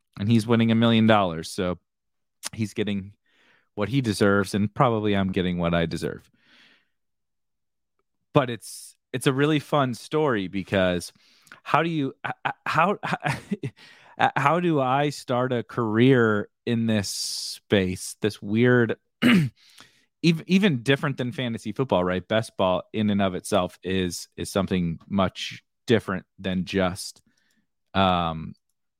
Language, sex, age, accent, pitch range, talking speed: English, male, 30-49, American, 95-125 Hz, 130 wpm